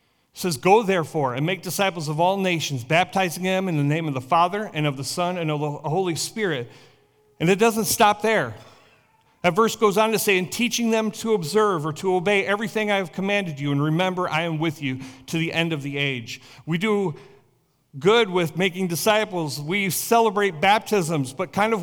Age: 40-59